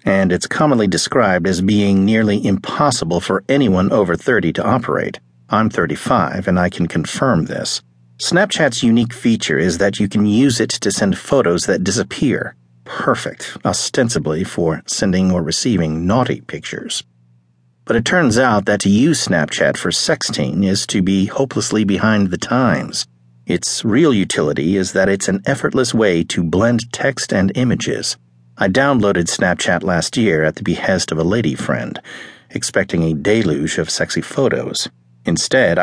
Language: English